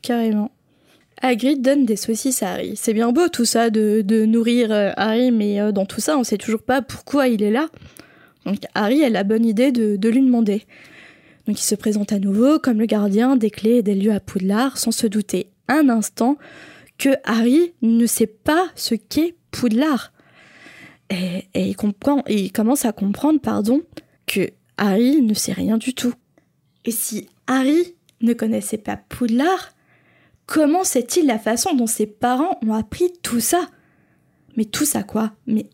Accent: French